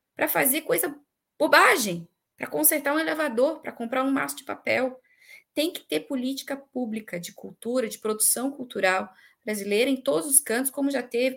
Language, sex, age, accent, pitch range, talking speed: Portuguese, female, 20-39, Brazilian, 230-290 Hz, 170 wpm